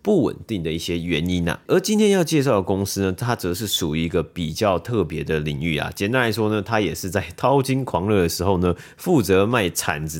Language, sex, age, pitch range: Chinese, male, 30-49, 90-115 Hz